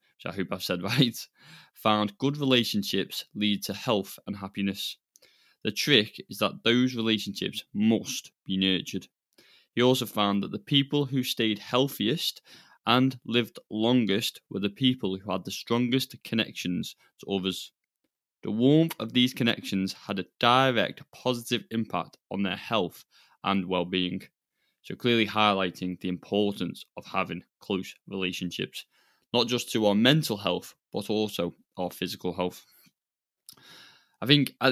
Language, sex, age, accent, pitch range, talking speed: English, male, 20-39, British, 95-120 Hz, 140 wpm